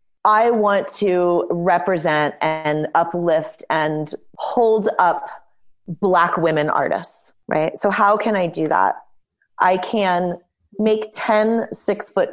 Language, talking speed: English, 115 wpm